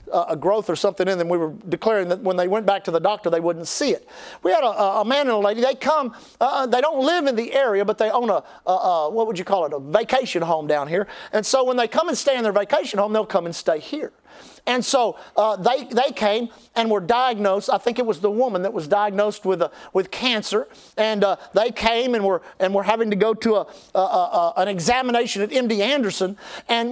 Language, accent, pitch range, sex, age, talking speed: English, American, 210-275 Hz, male, 50-69, 250 wpm